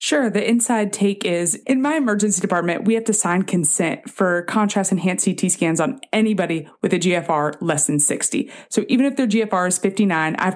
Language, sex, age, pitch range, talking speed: English, female, 20-39, 170-220 Hz, 205 wpm